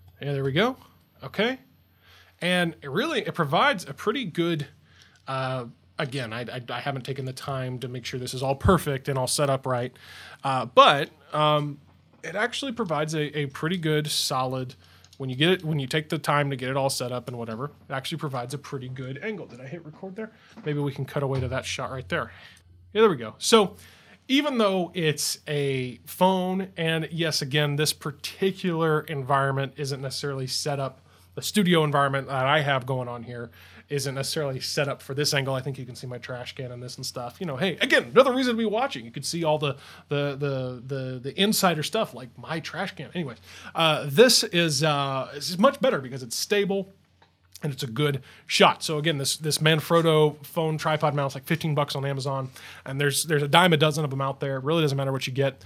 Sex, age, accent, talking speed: male, 20-39, American, 220 wpm